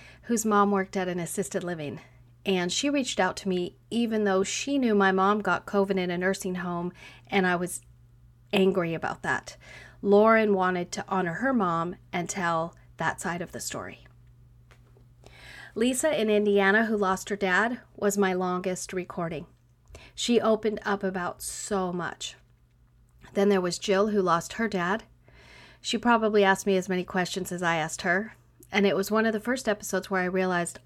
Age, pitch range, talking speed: 40-59, 175-205 Hz, 175 wpm